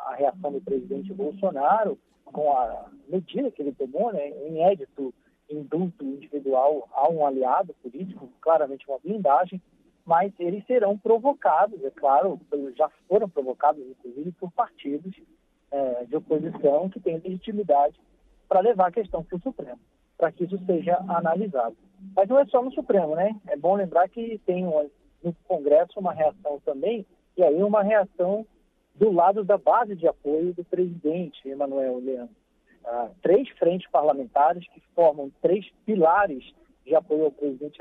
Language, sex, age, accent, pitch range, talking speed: Portuguese, male, 40-59, Brazilian, 145-195 Hz, 150 wpm